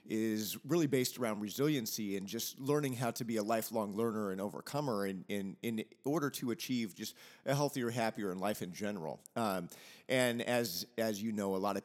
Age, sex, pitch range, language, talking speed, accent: 40-59, male, 100-135 Hz, English, 200 wpm, American